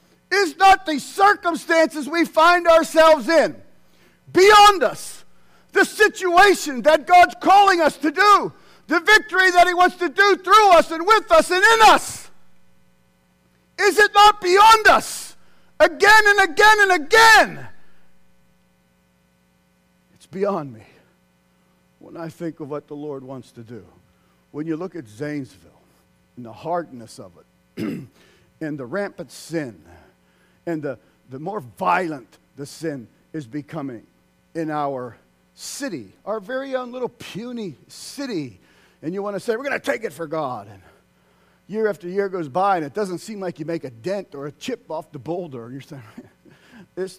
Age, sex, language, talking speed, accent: 50-69, male, English, 155 wpm, American